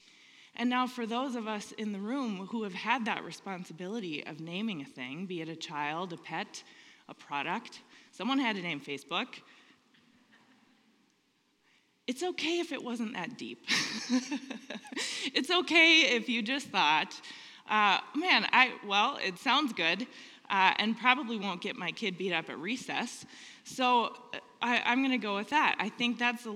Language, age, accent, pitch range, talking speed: English, 20-39, American, 195-275 Hz, 165 wpm